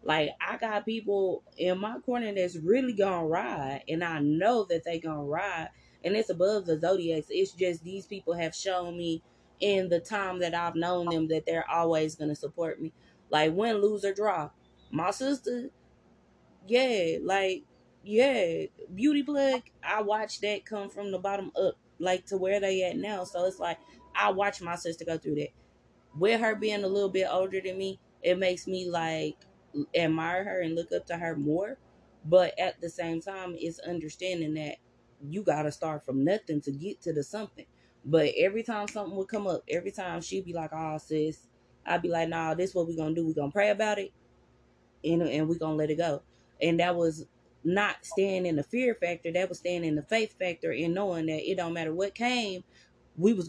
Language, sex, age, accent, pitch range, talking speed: English, female, 20-39, American, 165-200 Hz, 205 wpm